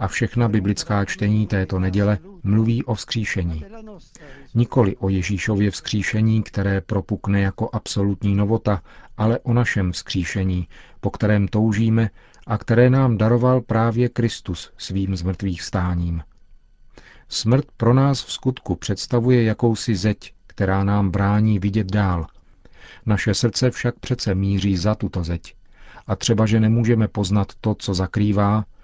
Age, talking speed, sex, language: 40-59, 130 wpm, male, Czech